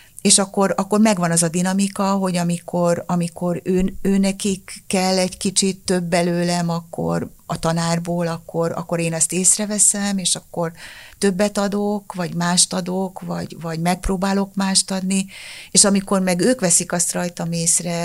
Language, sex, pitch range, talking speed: Hungarian, female, 170-195 Hz, 155 wpm